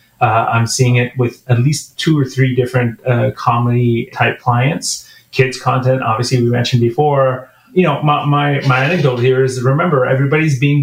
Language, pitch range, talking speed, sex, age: English, 125-145 Hz, 175 wpm, male, 30-49